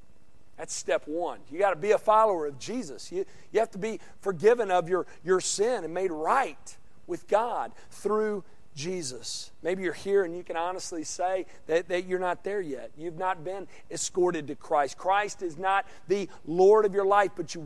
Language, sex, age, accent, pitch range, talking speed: English, male, 40-59, American, 155-200 Hz, 195 wpm